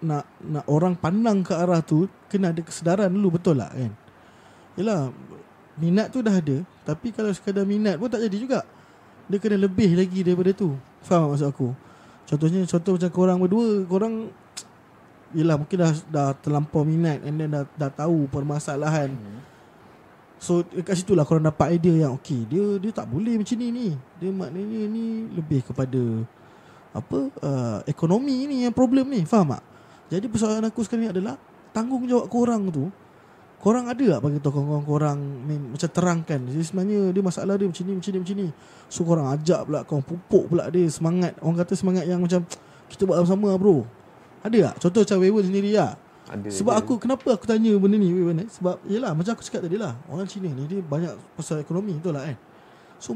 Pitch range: 150-205 Hz